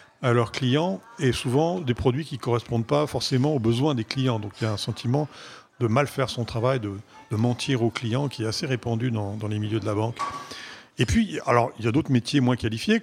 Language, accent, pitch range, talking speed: French, French, 110-125 Hz, 245 wpm